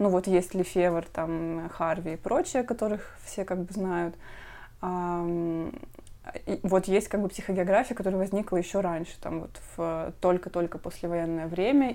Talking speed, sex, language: 140 wpm, female, Russian